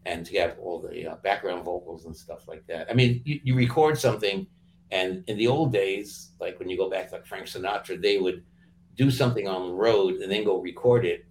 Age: 60-79